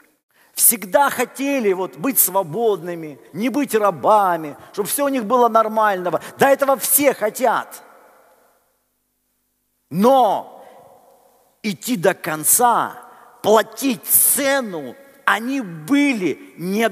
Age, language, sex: 50-69, Russian, male